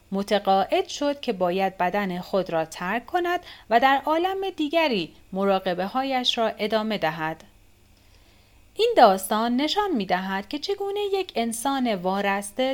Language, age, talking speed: Persian, 30-49, 125 wpm